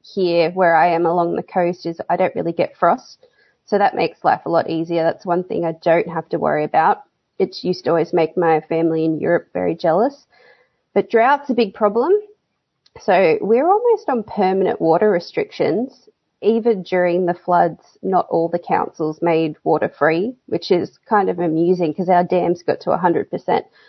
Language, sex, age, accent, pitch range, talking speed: English, female, 20-39, Australian, 170-230 Hz, 190 wpm